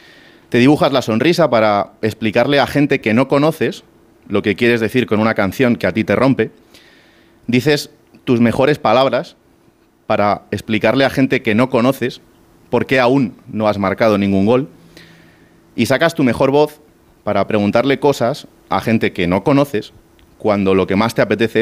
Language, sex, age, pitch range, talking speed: Spanish, male, 30-49, 100-130 Hz, 170 wpm